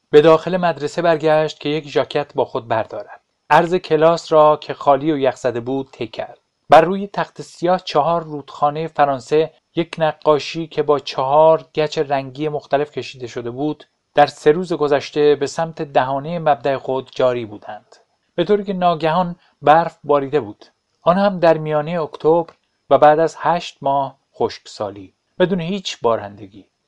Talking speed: 160 wpm